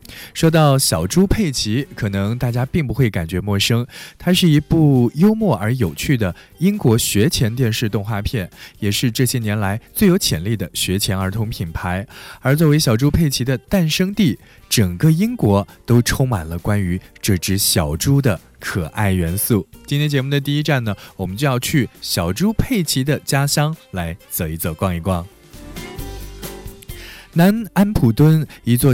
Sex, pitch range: male, 95-140 Hz